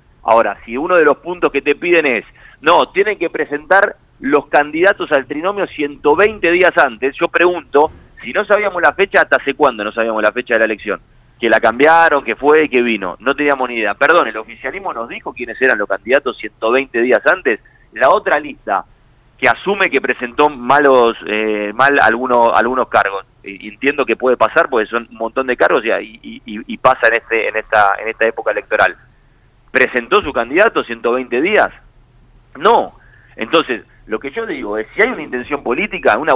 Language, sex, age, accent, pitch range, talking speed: Spanish, male, 30-49, Argentinian, 115-160 Hz, 195 wpm